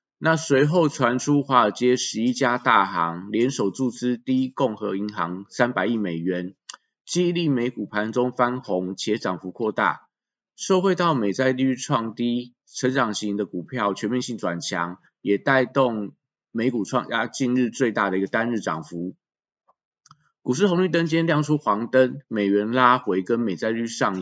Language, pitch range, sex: Chinese, 100-130 Hz, male